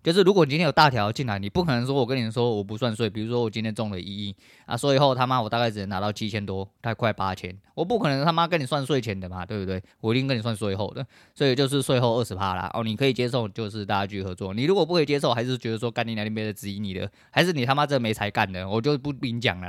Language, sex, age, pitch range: Chinese, male, 20-39, 100-150 Hz